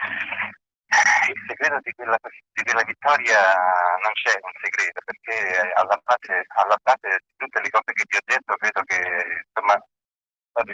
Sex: male